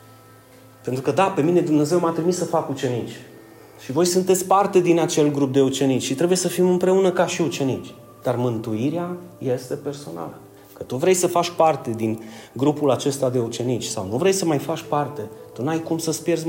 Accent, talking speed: native, 200 wpm